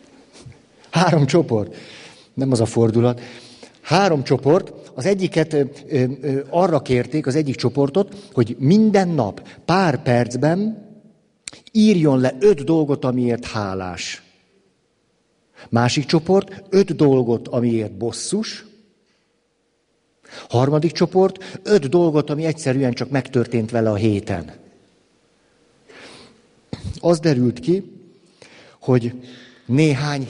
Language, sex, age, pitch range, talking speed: Hungarian, male, 50-69, 120-170 Hz, 95 wpm